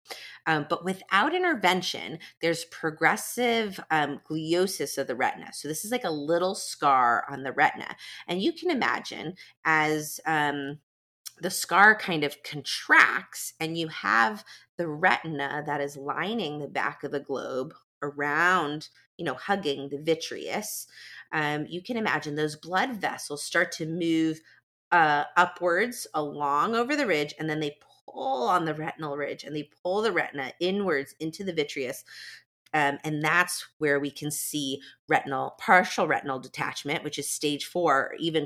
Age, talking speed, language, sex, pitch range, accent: 30-49, 160 wpm, English, female, 145-175 Hz, American